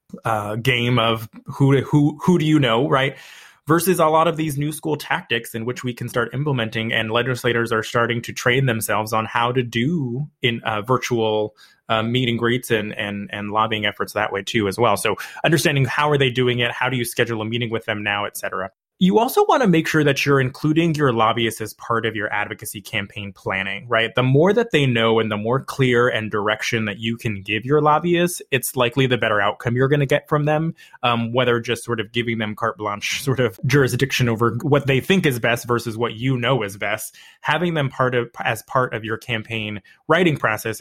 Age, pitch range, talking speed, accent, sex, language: 20-39, 110-140 Hz, 225 wpm, American, male, English